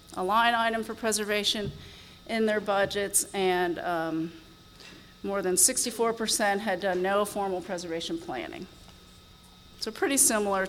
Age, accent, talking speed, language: 40-59, American, 130 wpm, English